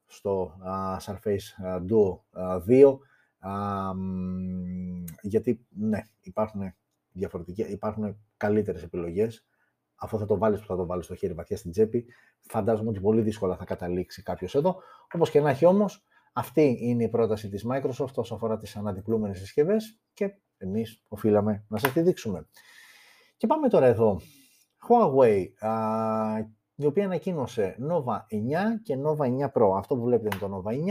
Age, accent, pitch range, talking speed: 30-49, native, 100-135 Hz, 155 wpm